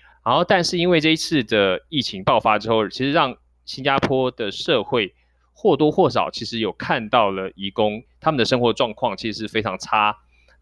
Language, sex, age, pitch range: Chinese, male, 20-39, 105-130 Hz